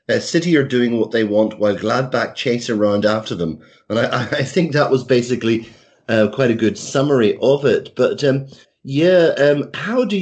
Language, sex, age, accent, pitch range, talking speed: English, male, 30-49, British, 105-135 Hz, 195 wpm